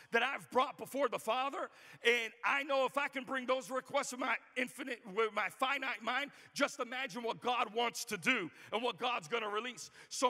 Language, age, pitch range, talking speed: English, 40-59, 215-255 Hz, 205 wpm